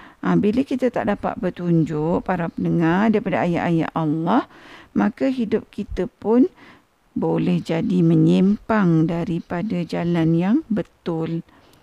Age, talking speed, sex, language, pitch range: 50-69, 110 wpm, female, Malay, 180-235 Hz